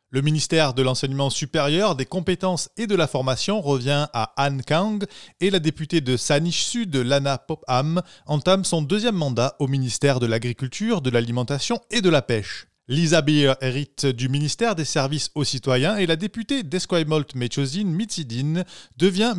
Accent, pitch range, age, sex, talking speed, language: French, 135-185 Hz, 20-39, male, 165 wpm, French